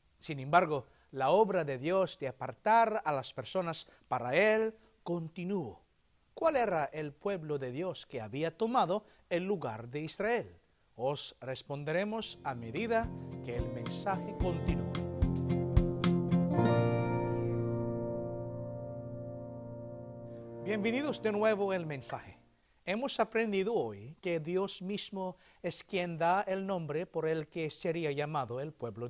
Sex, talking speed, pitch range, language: male, 120 wpm, 135-195 Hz, English